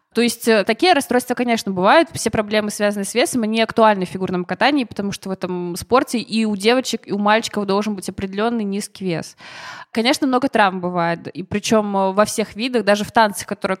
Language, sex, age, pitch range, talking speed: Russian, female, 20-39, 200-240 Hz, 195 wpm